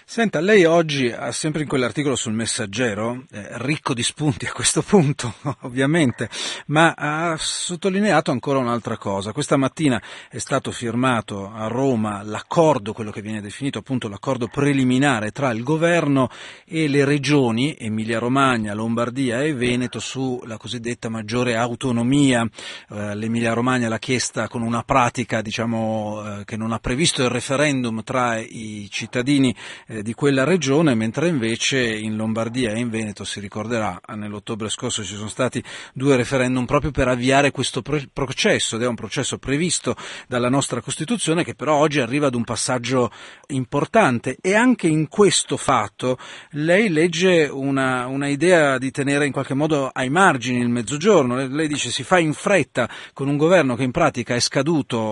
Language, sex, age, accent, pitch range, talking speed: Italian, male, 40-59, native, 115-150 Hz, 155 wpm